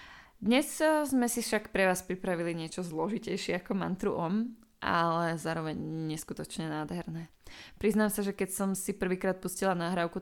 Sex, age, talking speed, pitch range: female, 20-39, 145 wpm, 170-195 Hz